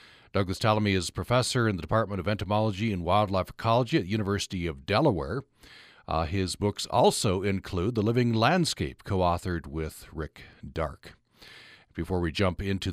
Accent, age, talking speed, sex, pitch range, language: American, 60-79, 160 wpm, male, 95-120 Hz, English